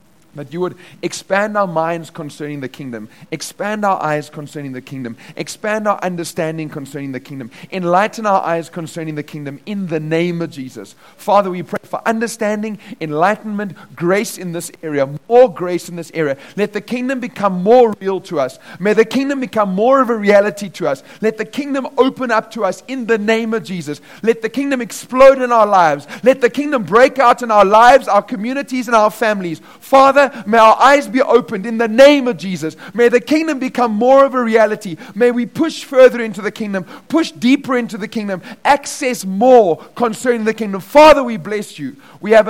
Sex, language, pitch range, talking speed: male, English, 160-235 Hz, 195 wpm